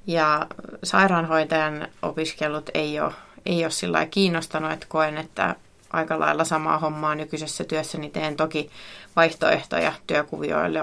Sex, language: female, Finnish